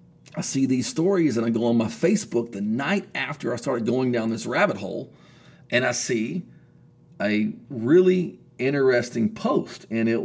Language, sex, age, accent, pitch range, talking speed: English, male, 40-59, American, 115-160 Hz, 170 wpm